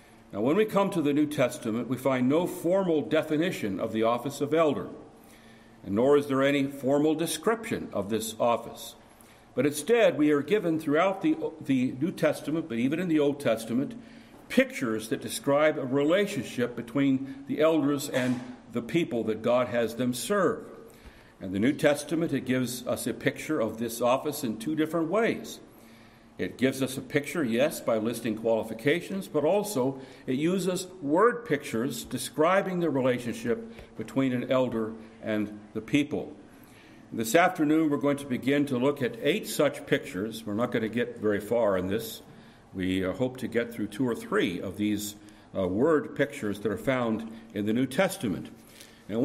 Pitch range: 115-155 Hz